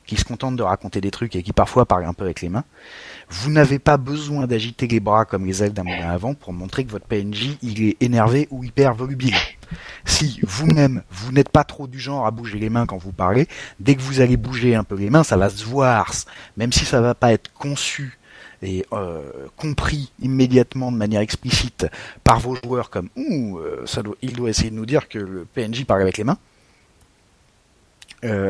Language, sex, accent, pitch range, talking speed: French, male, French, 100-135 Hz, 220 wpm